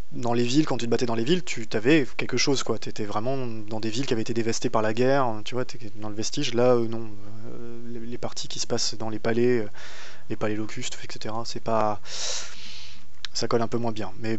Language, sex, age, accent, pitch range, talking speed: French, male, 20-39, French, 105-125 Hz, 255 wpm